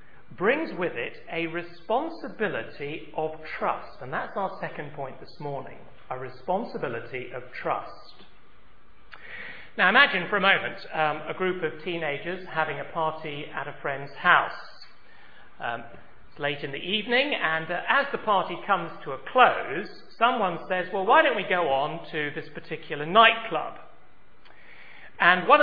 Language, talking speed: English, 150 wpm